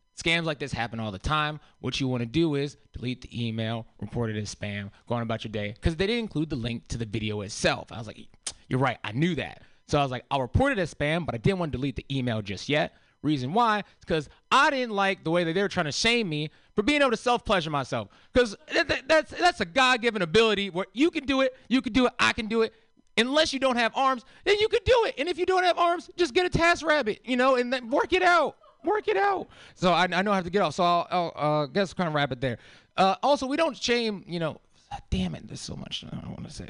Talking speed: 275 wpm